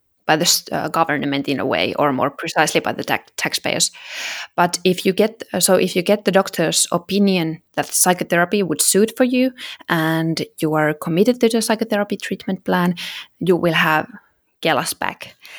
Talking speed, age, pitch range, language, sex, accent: 175 wpm, 20-39, 160-195 Hz, English, female, Finnish